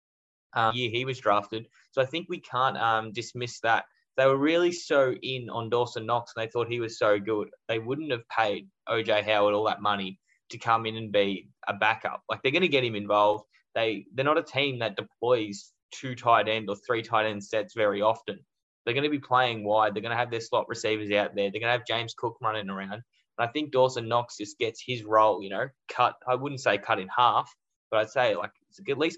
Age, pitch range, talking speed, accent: 10-29, 110-130 Hz, 235 wpm, Australian